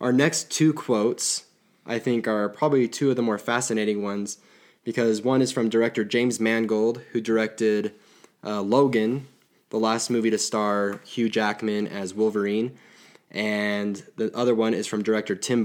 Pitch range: 100-115 Hz